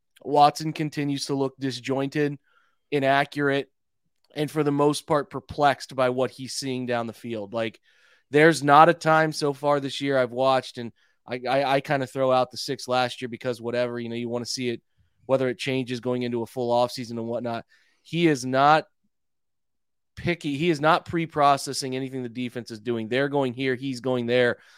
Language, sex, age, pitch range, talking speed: English, male, 20-39, 125-145 Hz, 195 wpm